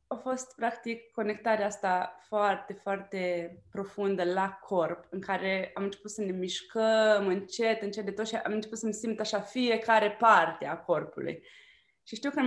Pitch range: 185-230 Hz